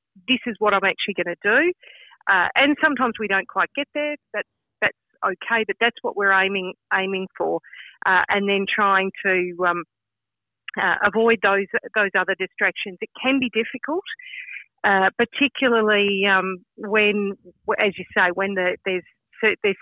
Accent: Australian